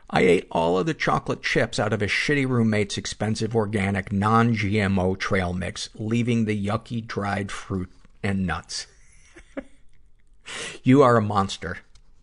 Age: 50-69